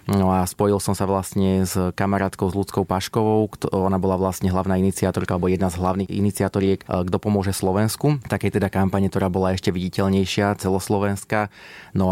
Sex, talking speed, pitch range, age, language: male, 170 wpm, 95-100 Hz, 30-49, Slovak